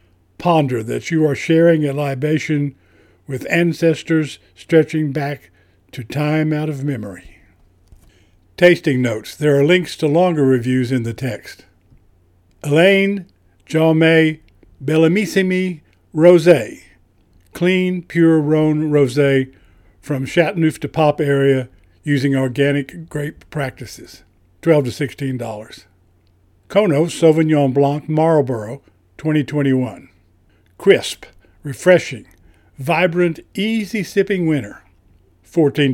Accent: American